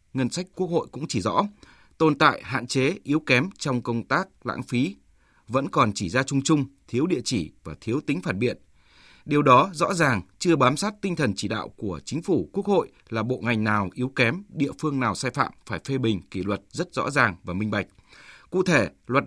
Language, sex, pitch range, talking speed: Vietnamese, male, 110-155 Hz, 225 wpm